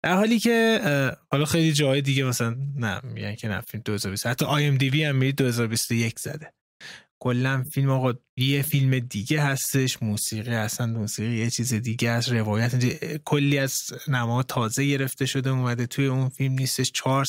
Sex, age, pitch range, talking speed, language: male, 20-39, 120-145 Hz, 190 wpm, Persian